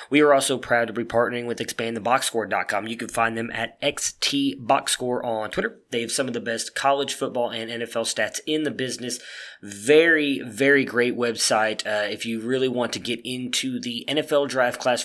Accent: American